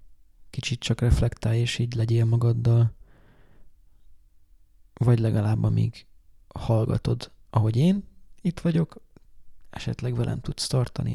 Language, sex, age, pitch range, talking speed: Hungarian, male, 20-39, 100-130 Hz, 100 wpm